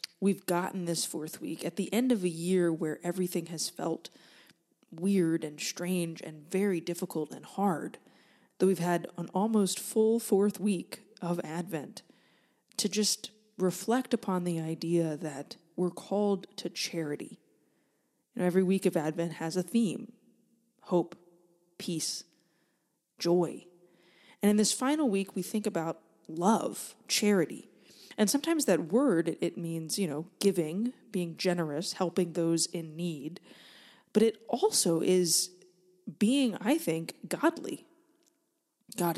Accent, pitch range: American, 170-210 Hz